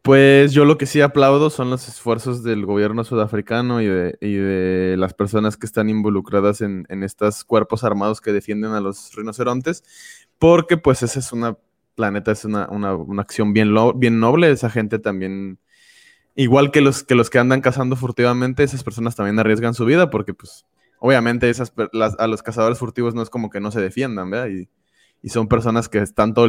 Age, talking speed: 20-39, 200 wpm